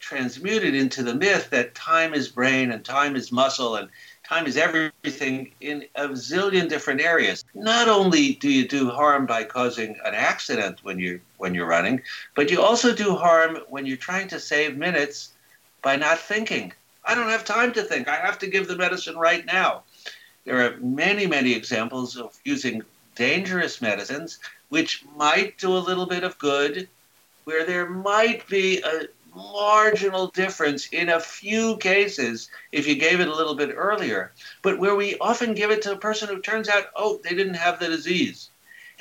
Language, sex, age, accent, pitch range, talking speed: English, male, 60-79, American, 140-205 Hz, 180 wpm